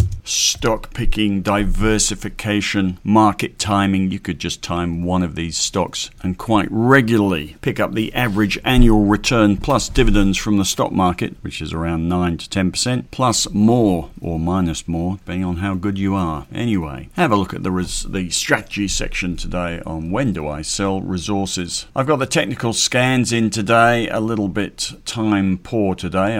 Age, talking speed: 50-69, 170 wpm